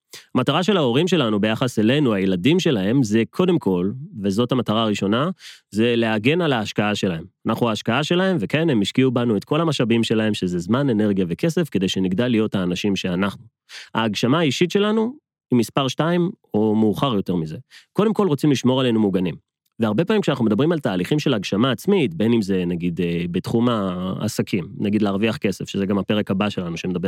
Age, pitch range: 30-49, 105-145 Hz